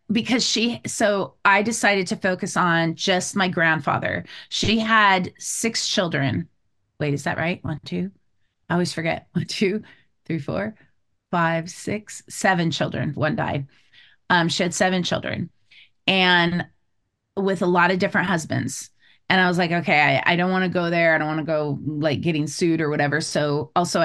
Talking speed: 175 wpm